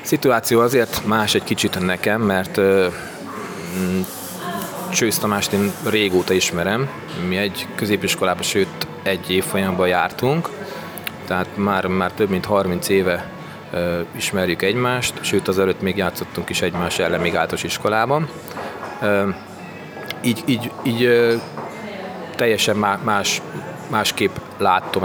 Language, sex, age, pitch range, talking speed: Hungarian, male, 30-49, 95-125 Hz, 110 wpm